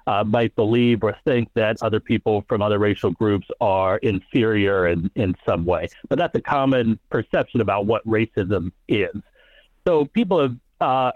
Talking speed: 165 wpm